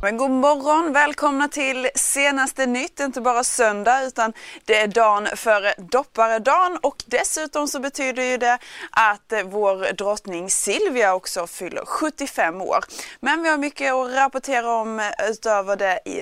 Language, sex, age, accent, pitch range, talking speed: Swedish, female, 20-39, Norwegian, 200-265 Hz, 150 wpm